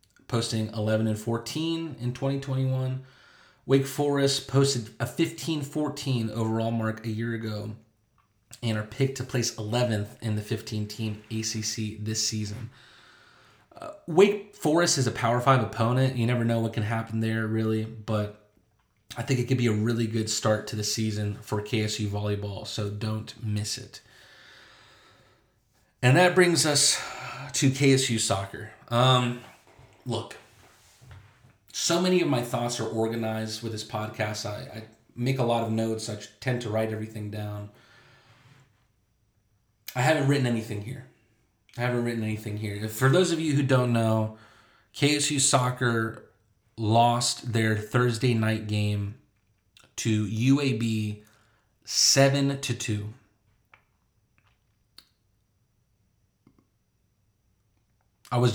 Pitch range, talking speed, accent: 110-125 Hz, 130 wpm, American